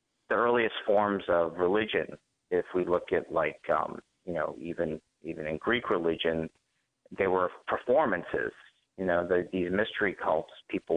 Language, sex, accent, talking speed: English, male, American, 155 wpm